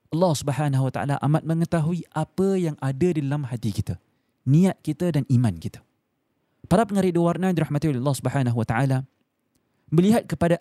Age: 30-49